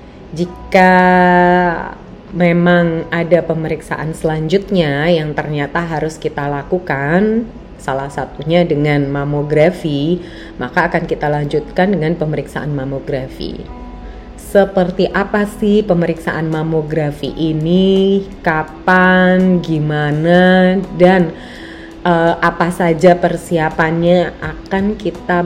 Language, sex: Indonesian, female